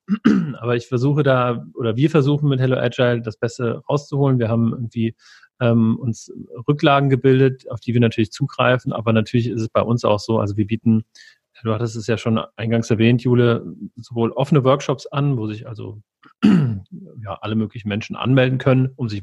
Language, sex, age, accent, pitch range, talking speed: German, male, 40-59, German, 110-135 Hz, 185 wpm